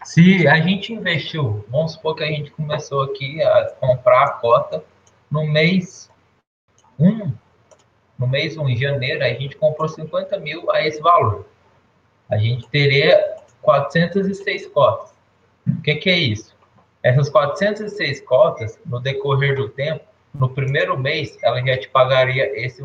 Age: 20-39